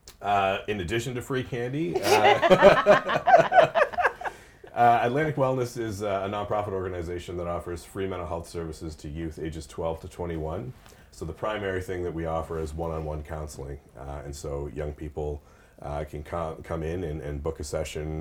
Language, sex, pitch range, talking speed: English, male, 75-85 Hz, 170 wpm